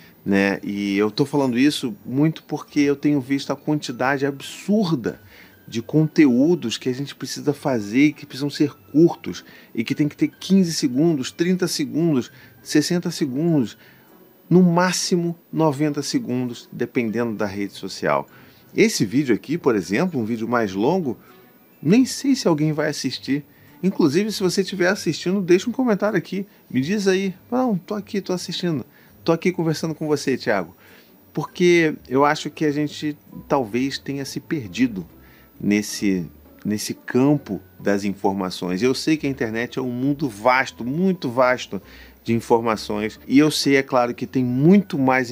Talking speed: 160 wpm